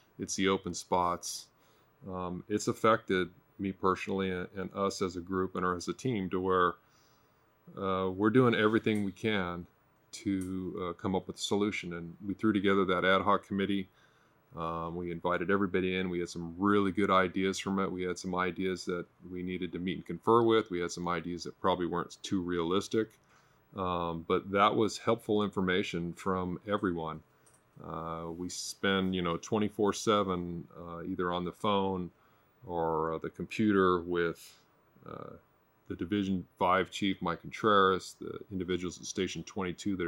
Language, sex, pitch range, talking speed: English, male, 90-100 Hz, 170 wpm